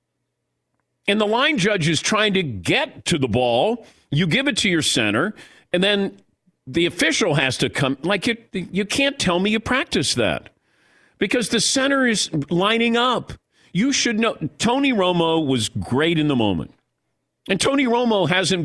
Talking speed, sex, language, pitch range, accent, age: 170 wpm, male, English, 150-215 Hz, American, 50-69